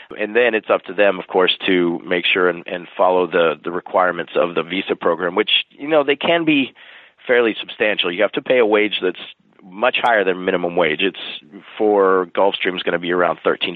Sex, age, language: male, 30-49, English